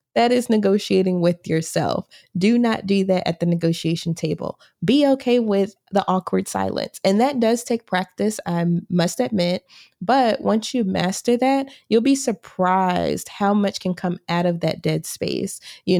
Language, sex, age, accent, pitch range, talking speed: English, female, 20-39, American, 175-220 Hz, 170 wpm